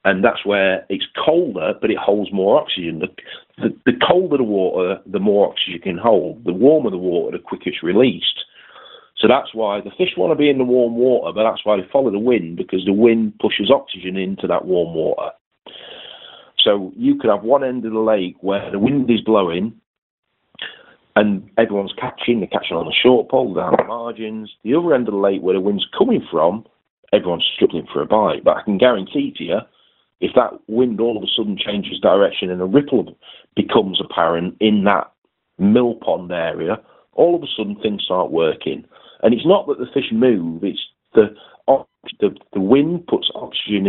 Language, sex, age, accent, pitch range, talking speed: English, male, 40-59, British, 100-130 Hz, 195 wpm